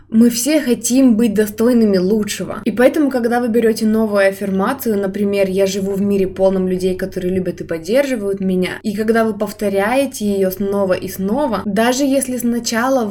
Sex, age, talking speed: female, 20-39, 165 wpm